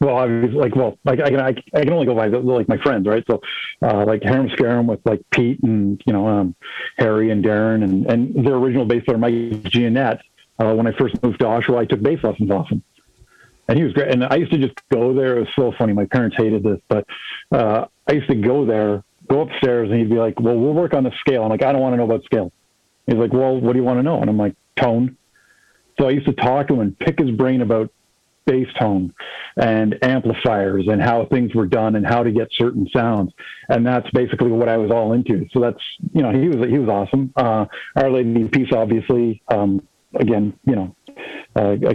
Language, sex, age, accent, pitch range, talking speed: English, male, 50-69, American, 110-130 Hz, 240 wpm